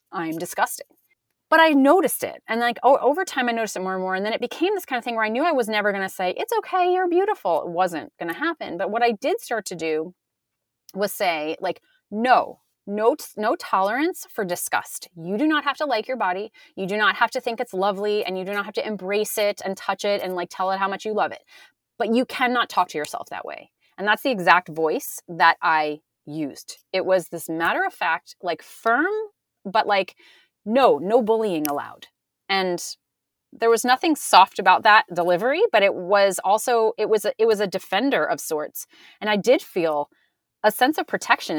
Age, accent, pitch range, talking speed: 30-49, American, 180-250 Hz, 220 wpm